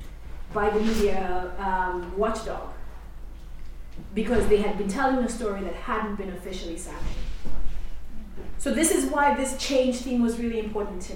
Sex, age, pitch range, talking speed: female, 20-39, 190-245 Hz, 150 wpm